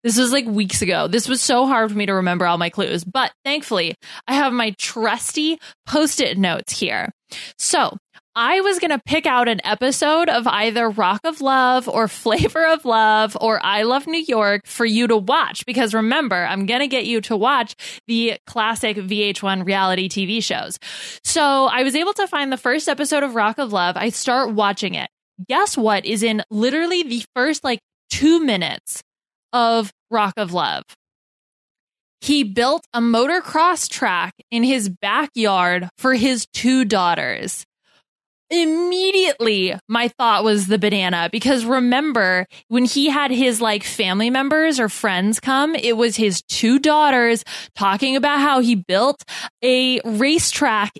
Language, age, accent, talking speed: English, 20-39, American, 165 wpm